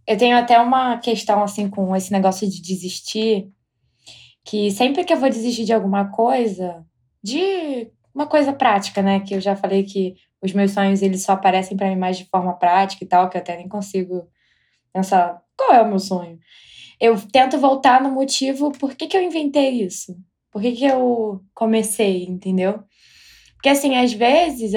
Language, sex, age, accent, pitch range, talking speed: Portuguese, female, 10-29, Brazilian, 195-260 Hz, 185 wpm